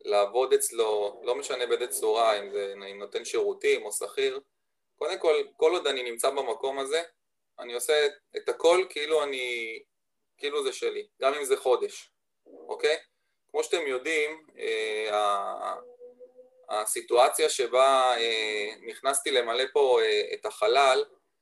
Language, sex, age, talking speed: Hebrew, male, 20-39, 135 wpm